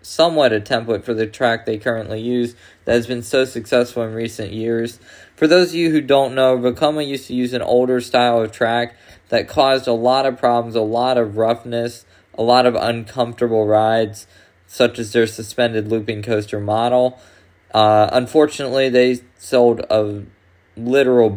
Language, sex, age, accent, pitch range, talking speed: English, male, 20-39, American, 105-125 Hz, 170 wpm